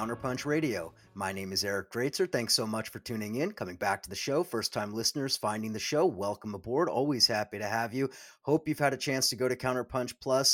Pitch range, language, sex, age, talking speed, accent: 110-130 Hz, English, male, 30-49, 235 wpm, American